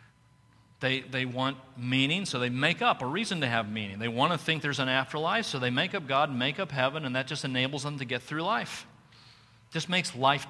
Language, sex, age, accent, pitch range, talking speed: English, male, 40-59, American, 115-145 Hz, 235 wpm